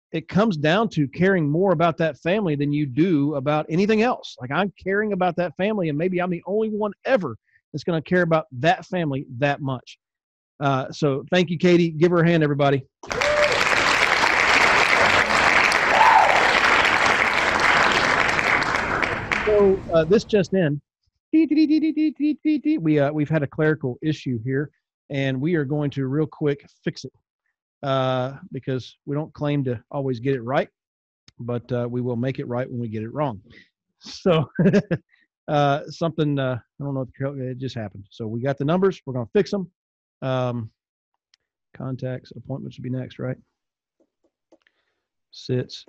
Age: 40-59